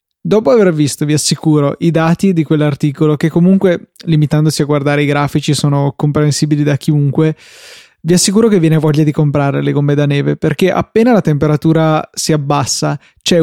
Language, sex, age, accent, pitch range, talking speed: Italian, male, 20-39, native, 145-160 Hz, 170 wpm